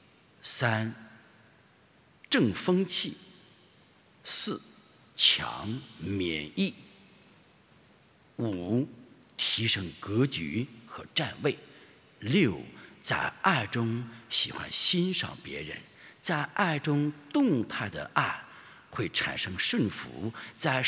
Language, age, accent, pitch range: English, 60-79, Chinese, 115-165 Hz